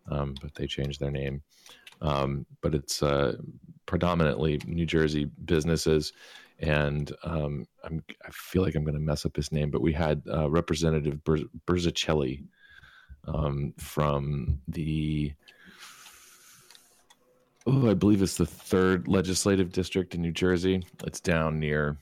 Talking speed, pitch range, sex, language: 135 wpm, 75-85 Hz, male, English